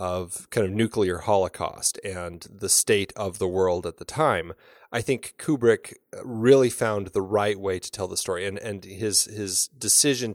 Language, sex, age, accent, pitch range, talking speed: English, male, 30-49, American, 95-120 Hz, 180 wpm